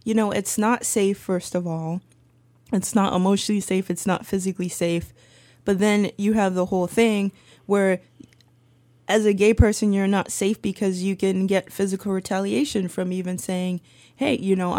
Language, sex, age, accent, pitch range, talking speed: English, female, 20-39, American, 170-205 Hz, 175 wpm